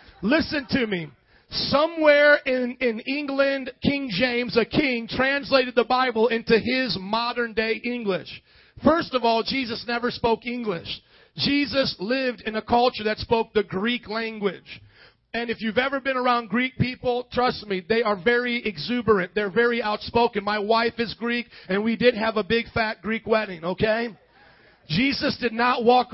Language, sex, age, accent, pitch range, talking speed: English, male, 40-59, American, 215-255 Hz, 165 wpm